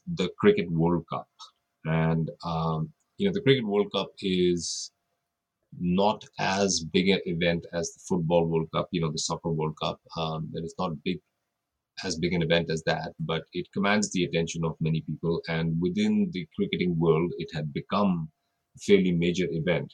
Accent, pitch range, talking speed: Indian, 80-100 Hz, 180 wpm